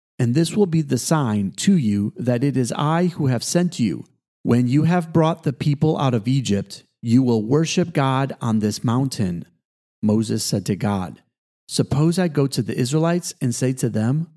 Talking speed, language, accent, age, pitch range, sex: 190 wpm, English, American, 40-59, 115-155 Hz, male